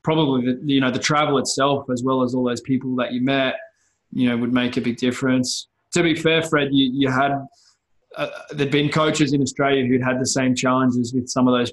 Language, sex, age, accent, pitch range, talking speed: English, male, 20-39, Australian, 125-135 Hz, 230 wpm